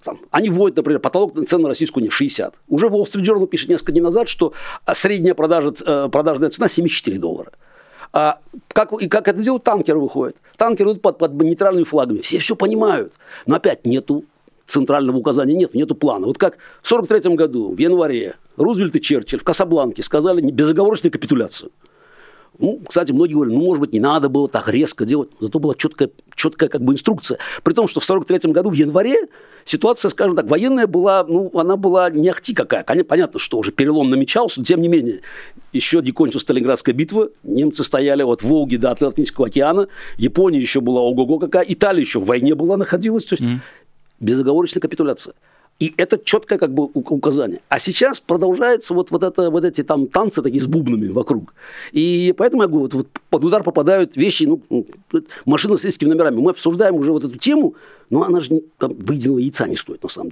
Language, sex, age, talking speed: Russian, male, 50-69, 190 wpm